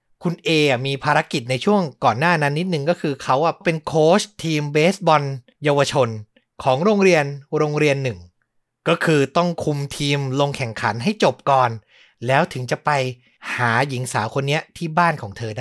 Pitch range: 140-200 Hz